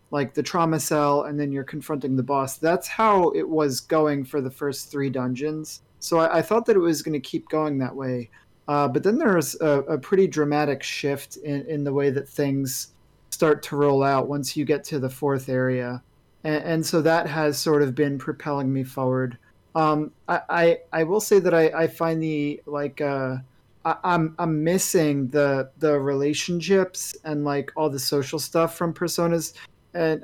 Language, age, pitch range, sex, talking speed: English, 40-59, 140-160 Hz, male, 195 wpm